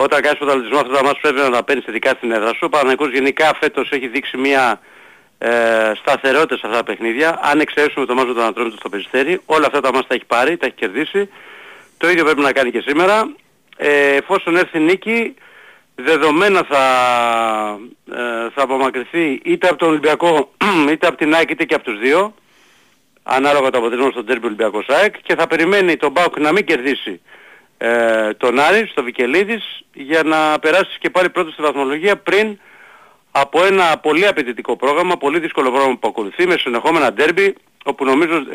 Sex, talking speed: male, 180 wpm